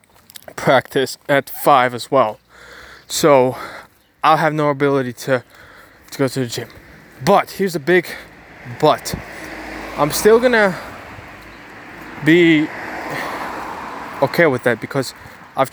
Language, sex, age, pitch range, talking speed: English, male, 20-39, 125-165 Hz, 115 wpm